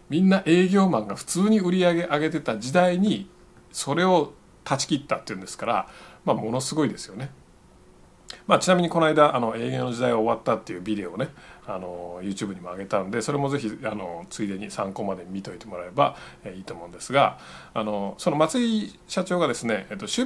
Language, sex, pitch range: Japanese, male, 120-180 Hz